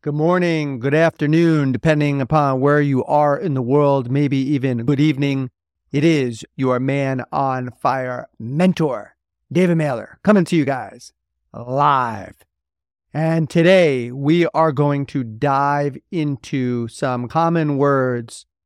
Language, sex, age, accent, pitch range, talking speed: English, male, 40-59, American, 130-155 Hz, 130 wpm